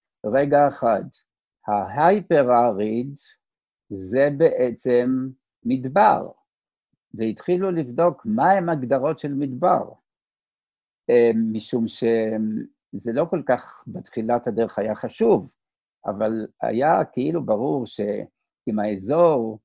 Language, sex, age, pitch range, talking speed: Hebrew, male, 60-79, 110-135 Hz, 85 wpm